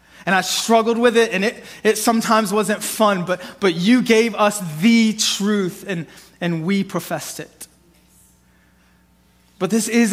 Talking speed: 155 wpm